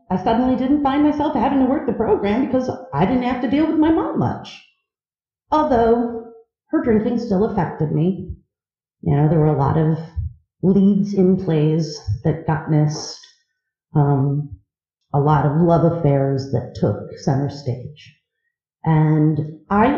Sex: female